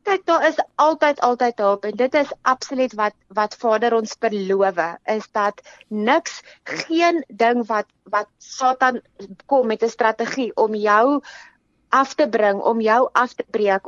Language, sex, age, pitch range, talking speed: English, female, 30-49, 215-270 Hz, 145 wpm